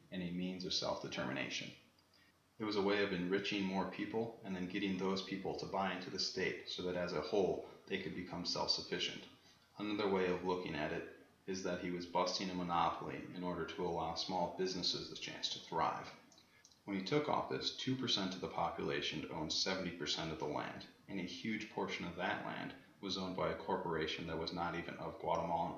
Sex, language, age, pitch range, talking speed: male, English, 30-49, 90-95 Hz, 200 wpm